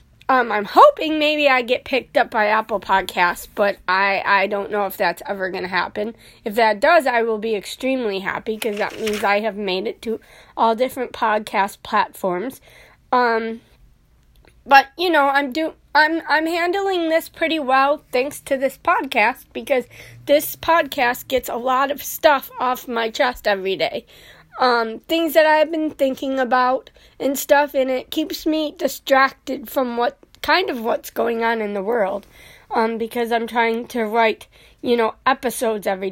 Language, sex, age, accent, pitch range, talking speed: English, female, 30-49, American, 220-280 Hz, 175 wpm